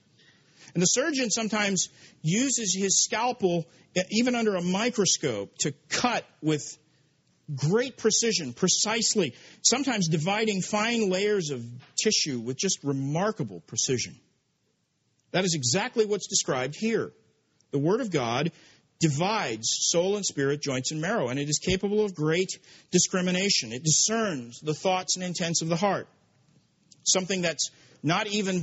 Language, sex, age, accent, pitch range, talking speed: English, male, 50-69, American, 150-210 Hz, 135 wpm